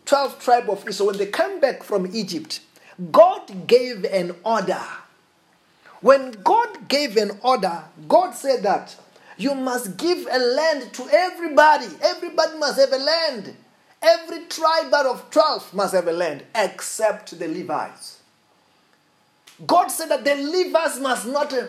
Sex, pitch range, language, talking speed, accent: male, 235-320 Hz, English, 145 wpm, South African